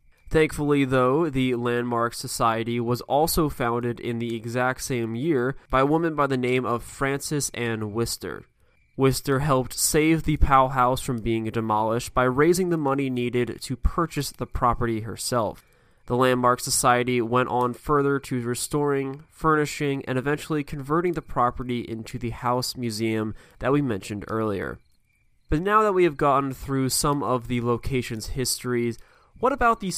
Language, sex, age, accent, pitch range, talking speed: English, male, 20-39, American, 120-140 Hz, 160 wpm